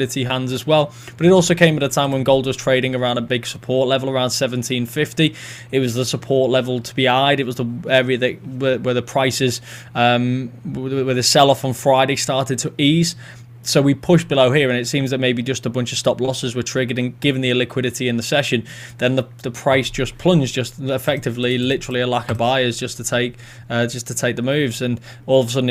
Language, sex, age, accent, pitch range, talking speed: English, male, 20-39, British, 120-130 Hz, 230 wpm